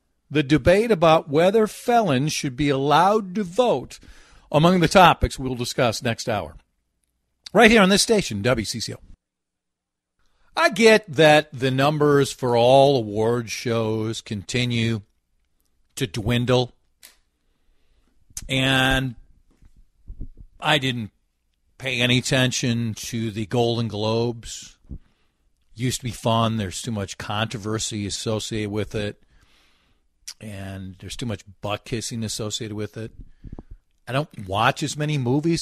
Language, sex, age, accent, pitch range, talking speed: English, male, 50-69, American, 110-155 Hz, 120 wpm